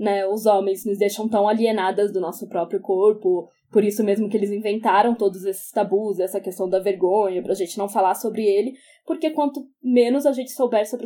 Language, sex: Portuguese, female